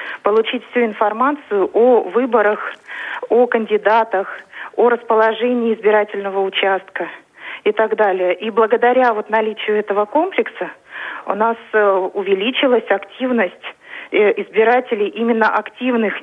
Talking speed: 95 wpm